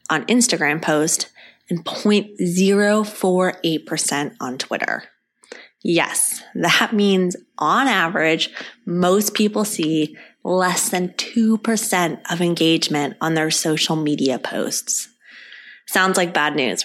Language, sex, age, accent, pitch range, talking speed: English, female, 20-39, American, 165-205 Hz, 105 wpm